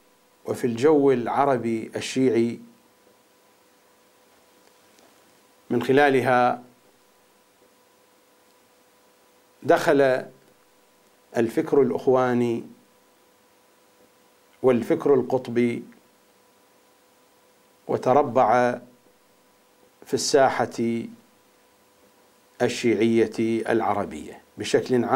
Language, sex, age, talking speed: English, male, 50-69, 40 wpm